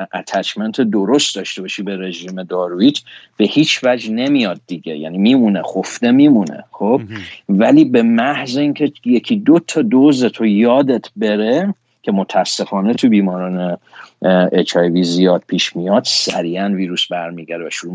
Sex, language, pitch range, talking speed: male, Persian, 95-145 Hz, 135 wpm